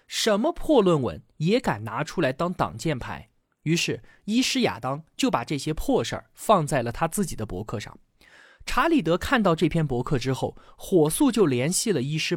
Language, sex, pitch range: Chinese, male, 135-215 Hz